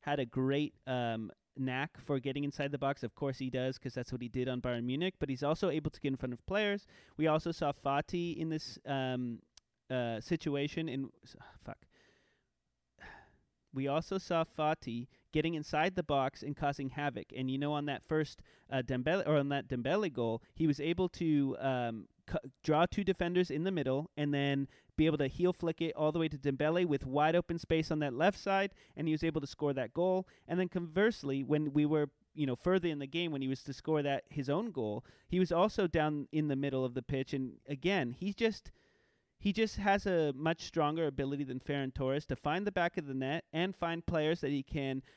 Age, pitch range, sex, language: 30-49, 135-170 Hz, male, English